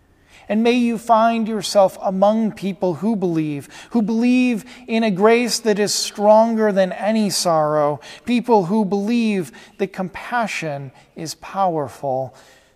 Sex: male